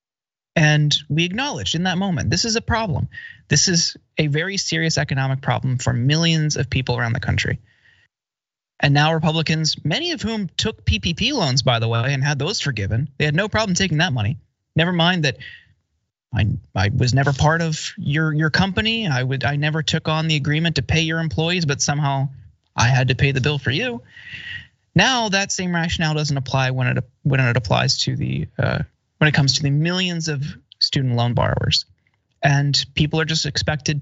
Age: 20-39